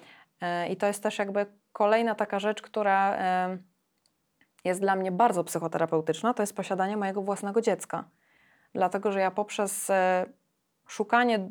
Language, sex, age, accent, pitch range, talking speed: Polish, female, 20-39, native, 180-205 Hz, 130 wpm